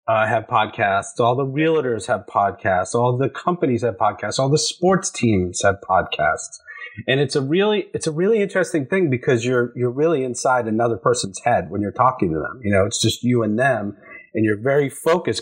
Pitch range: 110-145 Hz